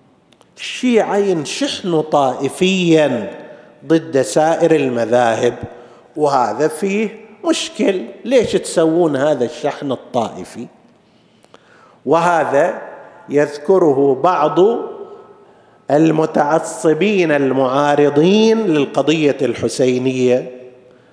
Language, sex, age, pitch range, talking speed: Arabic, male, 50-69, 140-195 Hz, 60 wpm